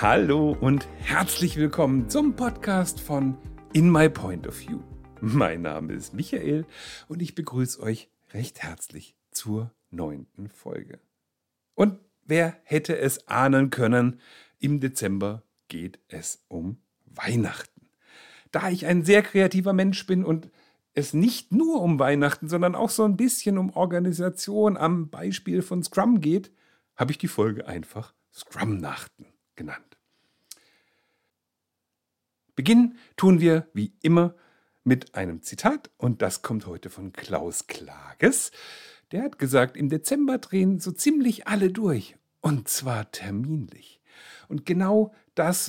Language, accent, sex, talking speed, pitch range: German, German, male, 130 wpm, 125-180 Hz